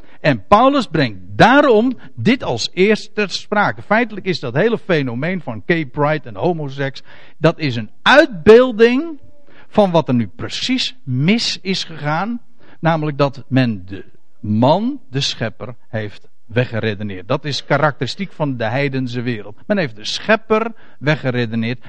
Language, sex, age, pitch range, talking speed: Dutch, male, 60-79, 125-200 Hz, 140 wpm